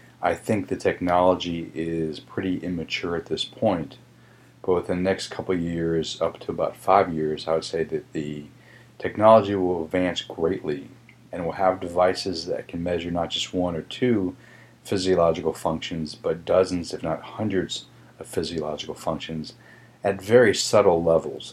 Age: 40-59